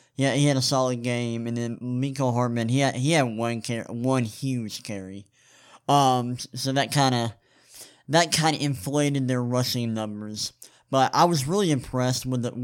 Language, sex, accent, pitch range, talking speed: English, male, American, 115-140 Hz, 180 wpm